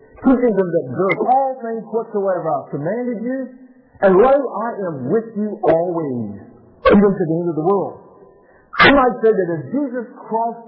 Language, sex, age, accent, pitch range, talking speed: English, male, 50-69, American, 155-225 Hz, 175 wpm